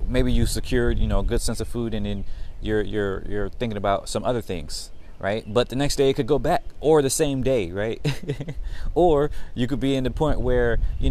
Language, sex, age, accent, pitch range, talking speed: English, male, 20-39, American, 90-130 Hz, 230 wpm